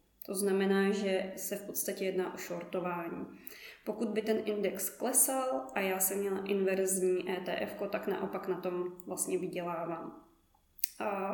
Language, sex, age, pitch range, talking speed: Czech, female, 20-39, 185-215 Hz, 145 wpm